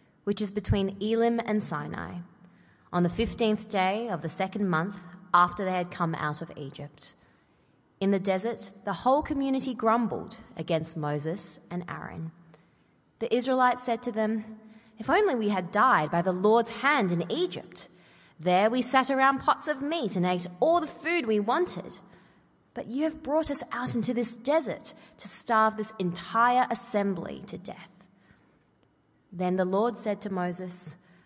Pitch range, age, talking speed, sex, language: 170-230 Hz, 20-39, 160 wpm, female, English